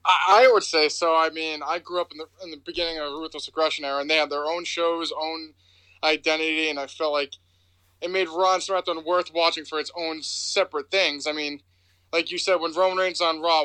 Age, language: 20-39, English